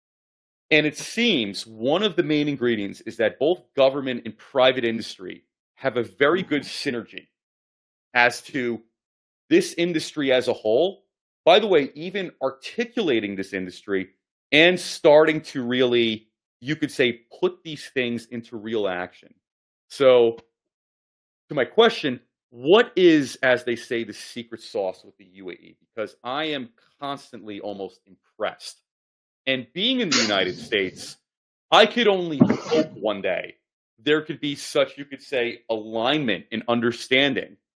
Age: 30-49